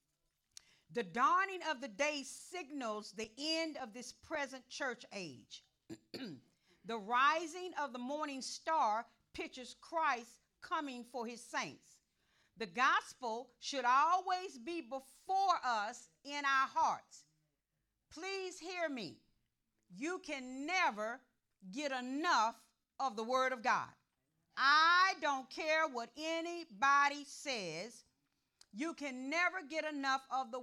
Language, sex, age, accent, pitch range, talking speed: English, female, 40-59, American, 205-285 Hz, 120 wpm